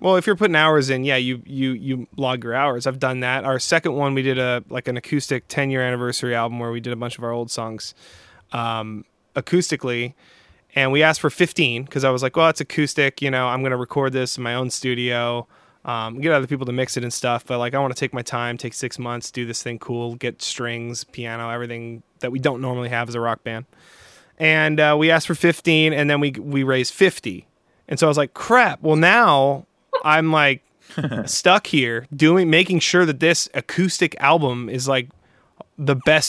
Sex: male